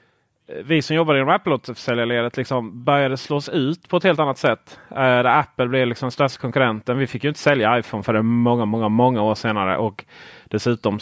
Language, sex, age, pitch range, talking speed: Swedish, male, 30-49, 115-150 Hz, 190 wpm